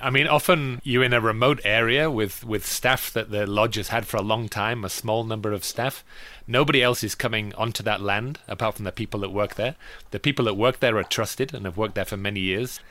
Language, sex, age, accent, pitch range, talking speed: English, male, 30-49, British, 105-130 Hz, 245 wpm